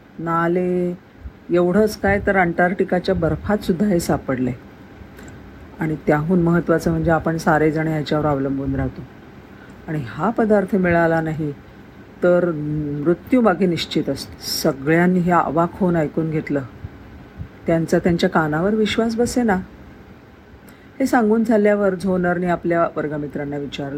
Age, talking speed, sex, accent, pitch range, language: 50-69, 95 wpm, female, native, 155-200 Hz, Marathi